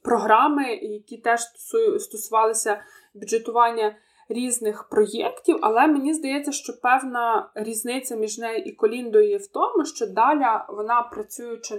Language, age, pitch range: Ukrainian, 20-39, 220-265 Hz